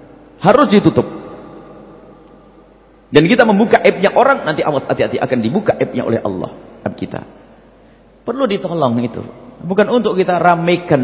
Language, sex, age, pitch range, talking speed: English, male, 40-59, 165-255 Hz, 125 wpm